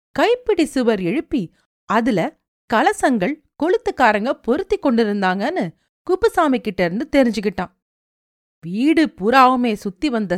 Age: 40-59